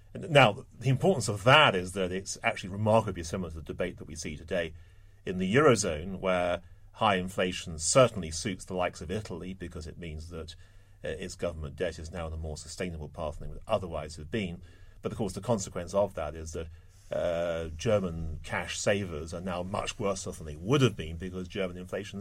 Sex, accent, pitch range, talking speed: male, British, 80-100 Hz, 205 wpm